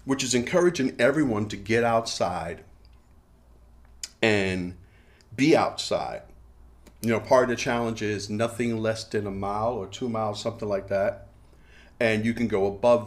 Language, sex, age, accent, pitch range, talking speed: English, male, 40-59, American, 90-110 Hz, 150 wpm